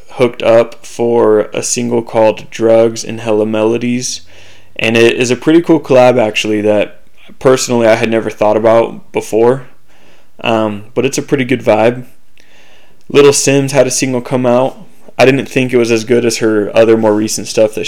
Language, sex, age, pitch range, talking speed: English, male, 20-39, 110-125 Hz, 180 wpm